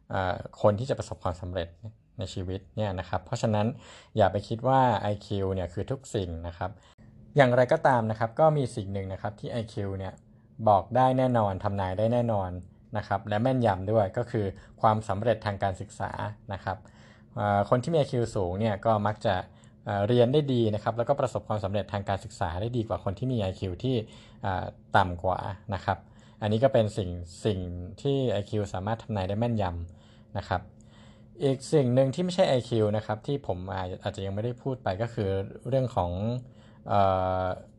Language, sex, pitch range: Thai, male, 100-115 Hz